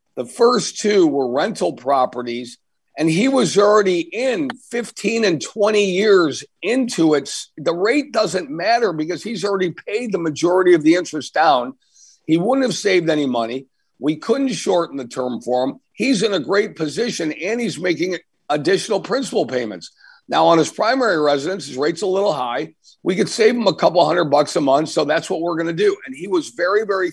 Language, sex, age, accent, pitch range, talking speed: English, male, 50-69, American, 155-210 Hz, 190 wpm